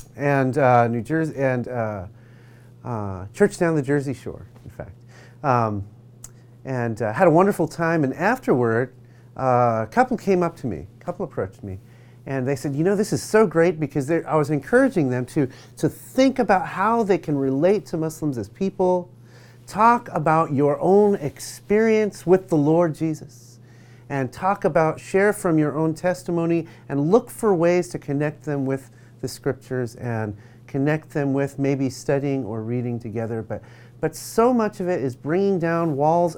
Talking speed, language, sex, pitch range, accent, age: 175 wpm, English, male, 120-165 Hz, American, 30-49